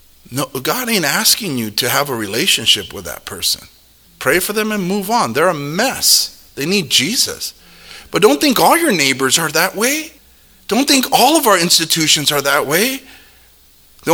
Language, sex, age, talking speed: English, male, 40-59, 185 wpm